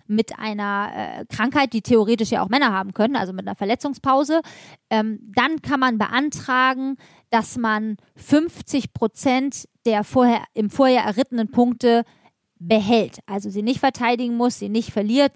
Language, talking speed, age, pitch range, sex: German, 150 wpm, 20-39, 215-250 Hz, female